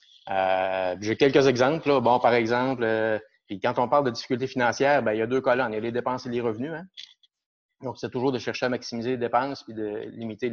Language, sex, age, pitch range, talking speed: French, male, 30-49, 105-125 Hz, 240 wpm